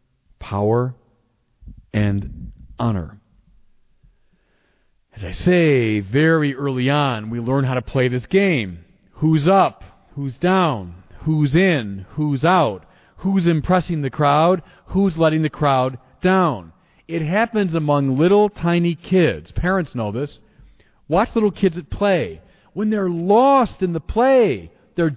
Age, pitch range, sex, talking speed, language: 40-59, 110-185 Hz, male, 130 wpm, English